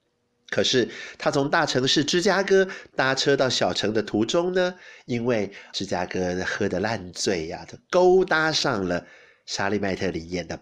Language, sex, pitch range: Chinese, male, 95-140 Hz